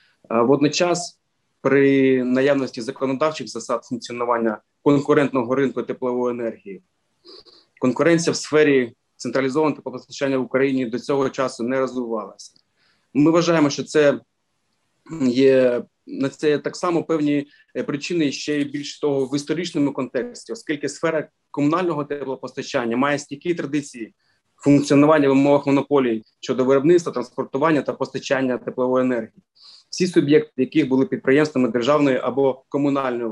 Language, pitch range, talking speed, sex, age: Ukrainian, 125-150 Hz, 115 wpm, male, 30-49